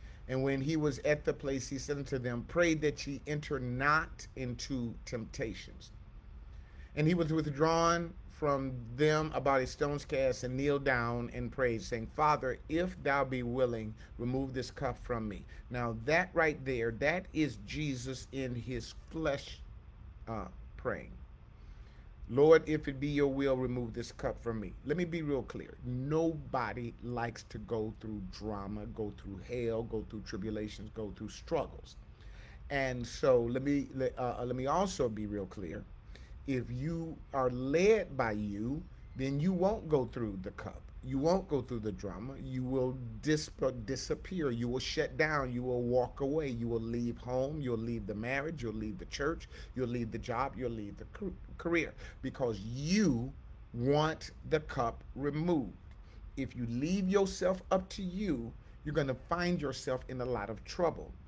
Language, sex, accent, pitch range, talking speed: English, male, American, 115-145 Hz, 165 wpm